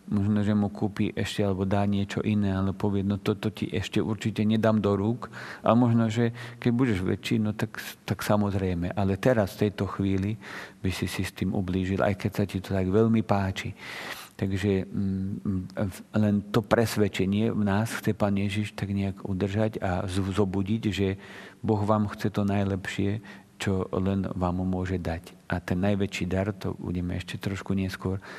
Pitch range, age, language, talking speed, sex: 95-105 Hz, 50-69, Slovak, 180 wpm, male